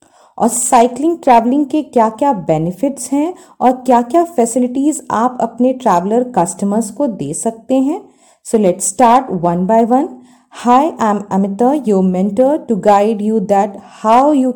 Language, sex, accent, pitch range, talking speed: Hindi, female, native, 195-270 Hz, 155 wpm